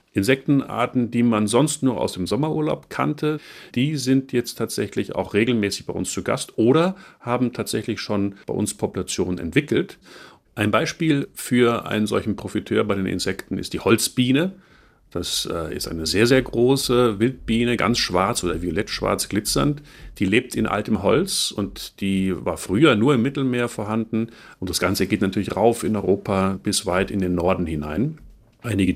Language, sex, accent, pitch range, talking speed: German, male, German, 95-130 Hz, 165 wpm